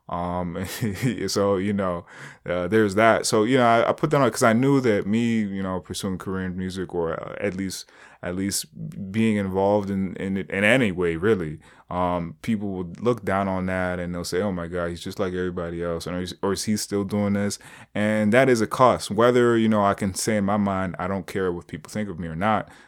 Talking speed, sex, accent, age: 240 wpm, male, American, 20-39